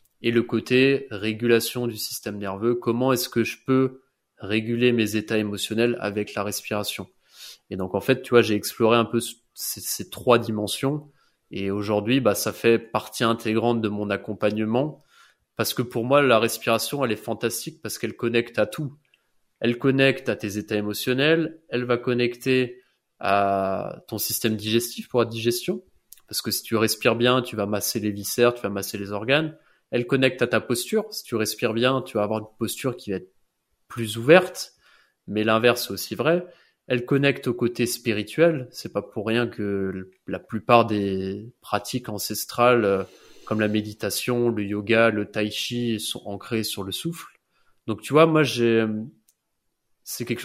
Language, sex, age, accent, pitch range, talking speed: French, male, 20-39, French, 105-125 Hz, 175 wpm